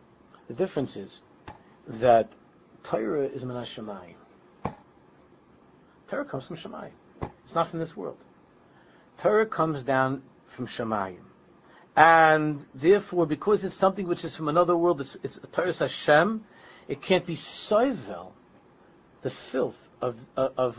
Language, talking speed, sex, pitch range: English, 130 wpm, male, 145-220 Hz